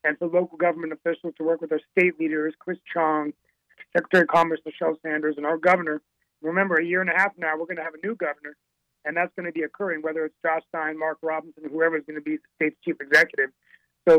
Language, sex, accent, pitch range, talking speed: English, male, American, 155-190 Hz, 240 wpm